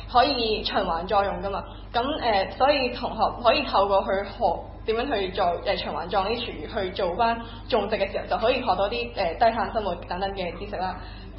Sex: female